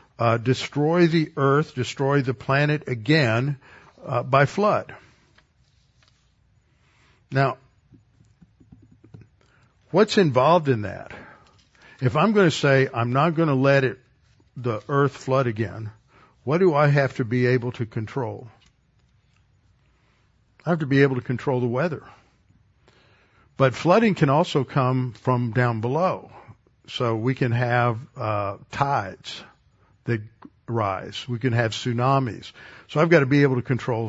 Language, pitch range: English, 115-140 Hz